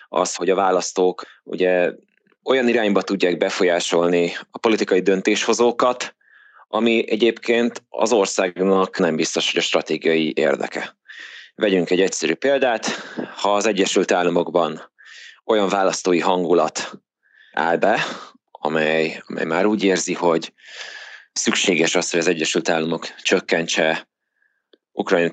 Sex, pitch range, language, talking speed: male, 85-105 Hz, Hungarian, 115 wpm